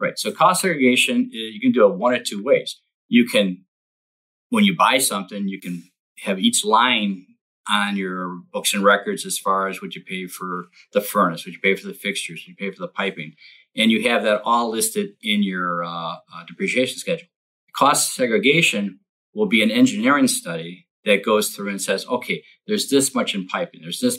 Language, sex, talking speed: English, male, 200 wpm